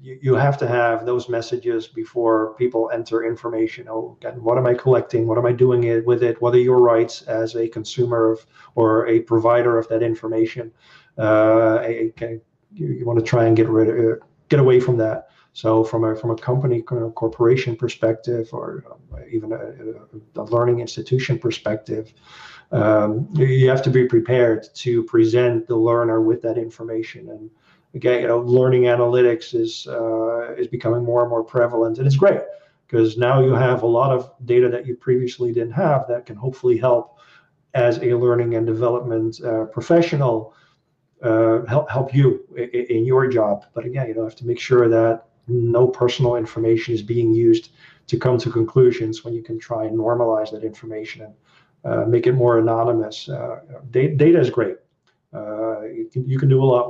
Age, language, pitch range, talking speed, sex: 40-59, English, 115-125 Hz, 180 wpm, male